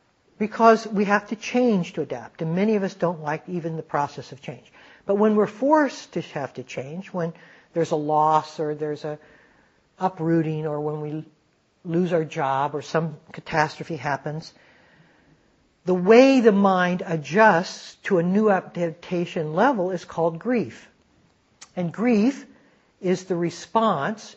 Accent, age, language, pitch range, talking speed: American, 60-79, English, 165-210 Hz, 155 wpm